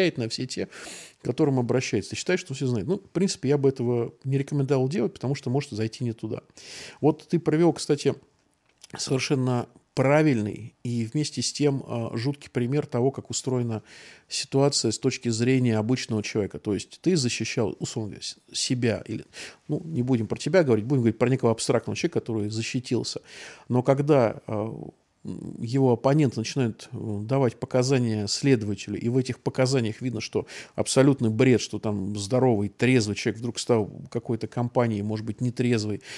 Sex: male